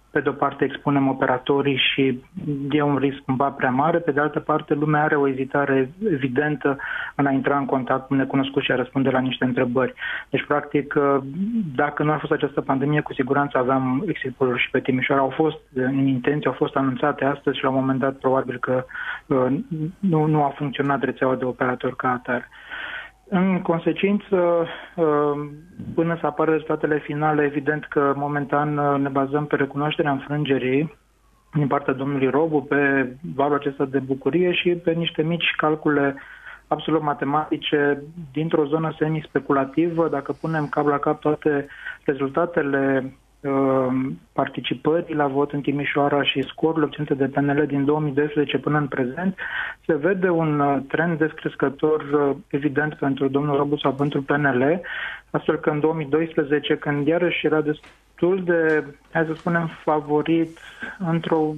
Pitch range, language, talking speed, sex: 140-155 Hz, Romanian, 150 wpm, male